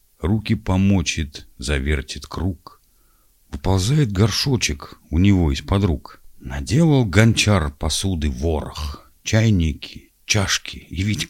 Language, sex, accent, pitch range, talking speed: Russian, male, native, 80-110 Hz, 95 wpm